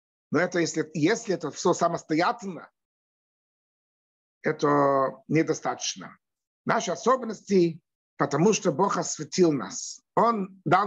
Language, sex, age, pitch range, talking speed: Russian, male, 60-79, 155-220 Hz, 100 wpm